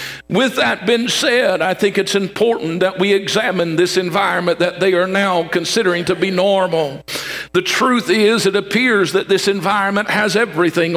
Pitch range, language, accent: 180-215 Hz, English, American